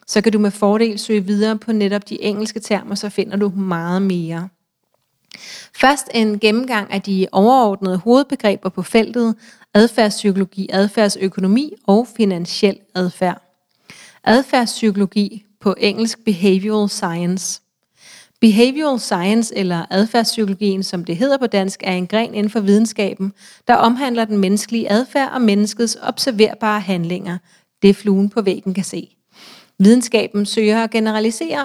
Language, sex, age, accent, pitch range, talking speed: Danish, female, 30-49, native, 195-225 Hz, 135 wpm